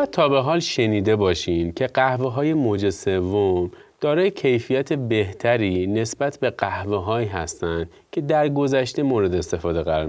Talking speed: 135 wpm